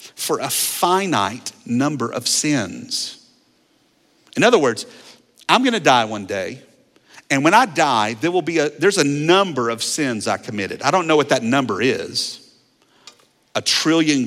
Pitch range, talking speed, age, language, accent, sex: 115-155 Hz, 160 wpm, 50-69, English, American, male